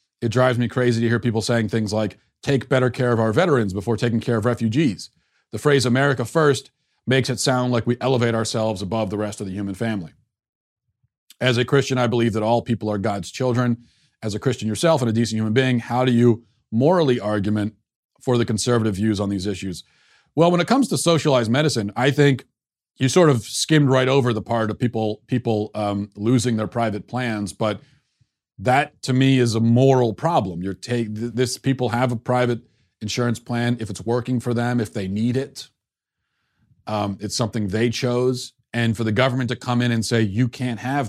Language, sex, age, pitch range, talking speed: English, male, 40-59, 110-130 Hz, 205 wpm